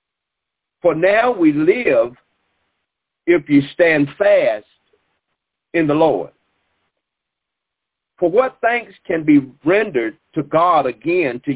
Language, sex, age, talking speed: English, male, 50-69, 110 wpm